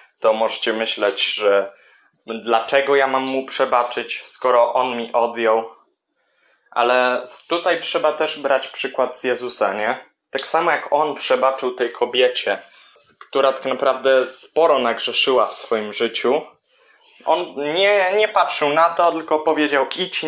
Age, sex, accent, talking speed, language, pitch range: 20-39, male, native, 140 wpm, Polish, 130-165 Hz